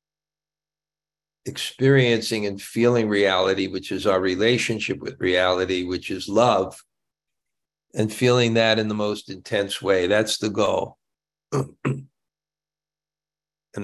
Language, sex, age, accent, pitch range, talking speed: English, male, 60-79, American, 100-155 Hz, 110 wpm